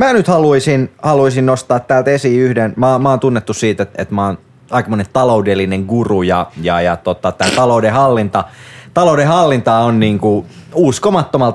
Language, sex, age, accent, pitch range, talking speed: Finnish, male, 30-49, native, 110-170 Hz, 155 wpm